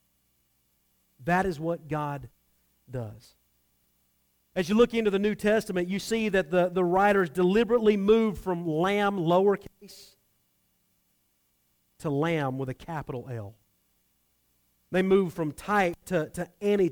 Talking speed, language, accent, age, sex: 130 wpm, English, American, 40-59, male